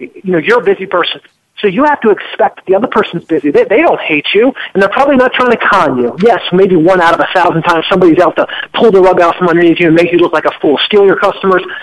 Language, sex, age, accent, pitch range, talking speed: English, male, 40-59, American, 175-220 Hz, 290 wpm